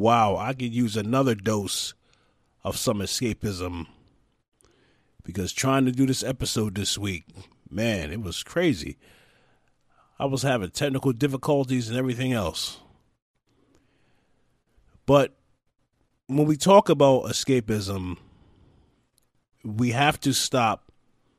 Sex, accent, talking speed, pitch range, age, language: male, American, 110 wpm, 100-135 Hz, 30-49, English